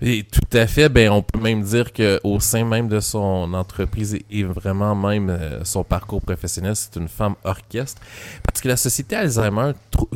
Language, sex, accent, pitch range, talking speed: French, male, Canadian, 95-115 Hz, 190 wpm